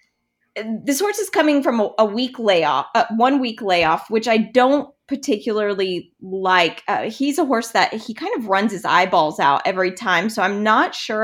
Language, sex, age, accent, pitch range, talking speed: English, female, 20-39, American, 185-255 Hz, 180 wpm